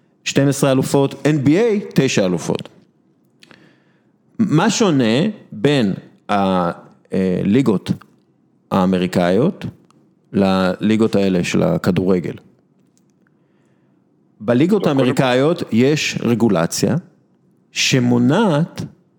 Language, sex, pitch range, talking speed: Hebrew, male, 100-140 Hz, 60 wpm